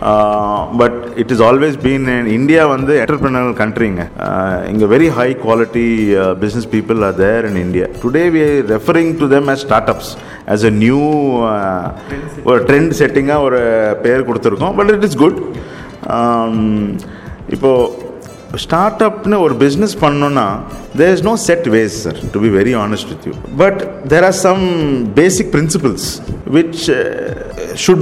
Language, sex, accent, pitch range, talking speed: Tamil, male, native, 110-155 Hz, 160 wpm